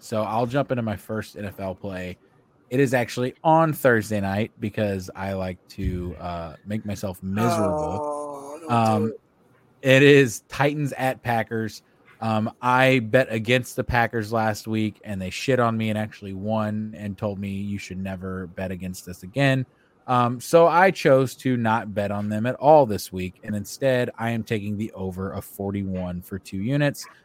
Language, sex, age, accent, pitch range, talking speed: English, male, 20-39, American, 100-125 Hz, 175 wpm